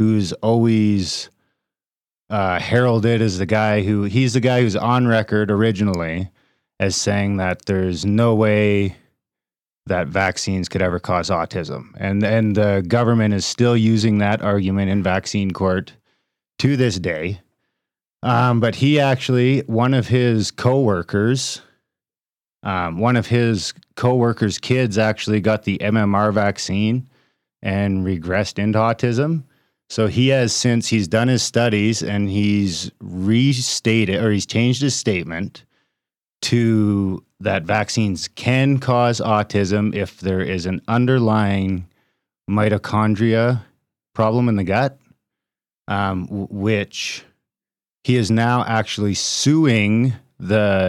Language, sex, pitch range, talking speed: English, male, 100-120 Hz, 125 wpm